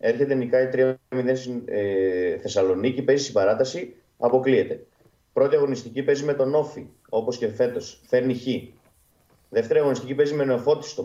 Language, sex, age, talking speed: Greek, male, 30-49, 135 wpm